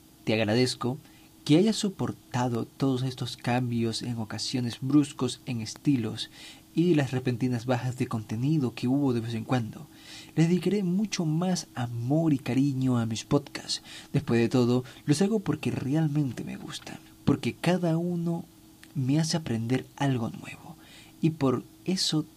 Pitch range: 125-160 Hz